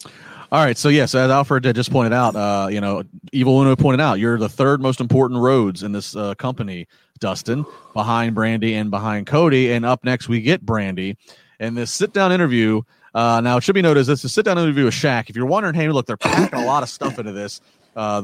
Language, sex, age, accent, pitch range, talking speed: English, male, 30-49, American, 105-135 Hz, 240 wpm